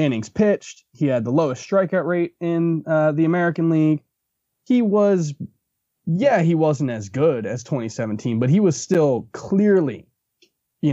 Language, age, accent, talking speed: English, 20-39, American, 155 wpm